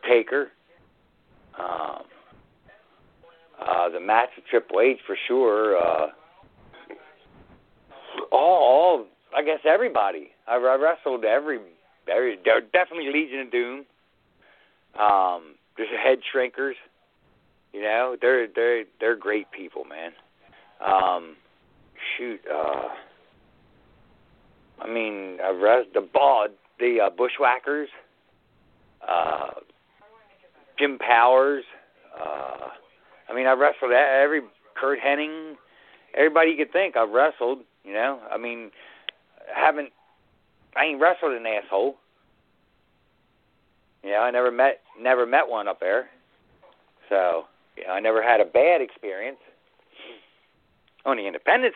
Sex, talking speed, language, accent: male, 115 wpm, English, American